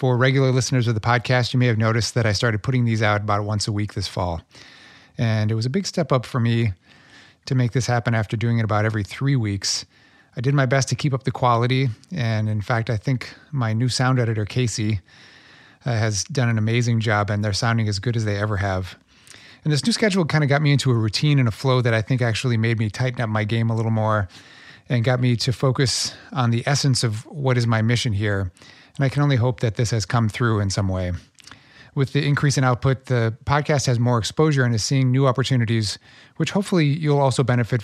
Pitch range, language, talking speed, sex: 110-130 Hz, English, 240 wpm, male